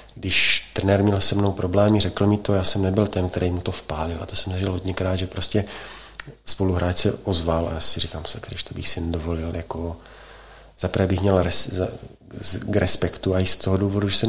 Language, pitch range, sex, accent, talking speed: Czech, 95-115 Hz, male, native, 225 wpm